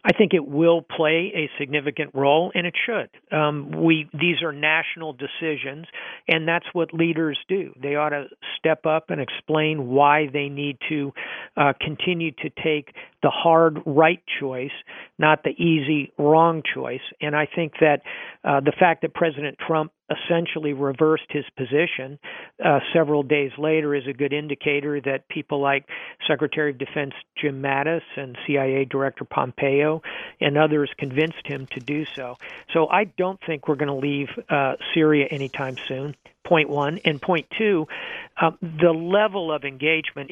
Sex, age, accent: male, 50-69, American